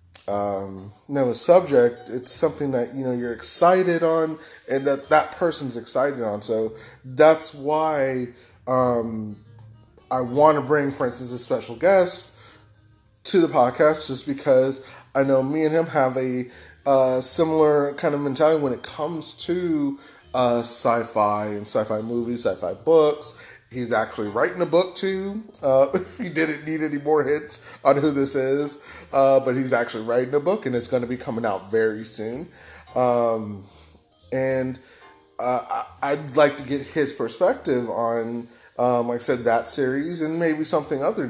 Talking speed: 165 wpm